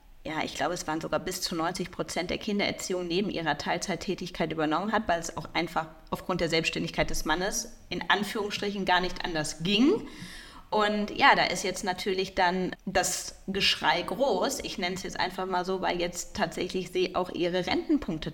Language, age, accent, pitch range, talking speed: German, 30-49, German, 175-215 Hz, 185 wpm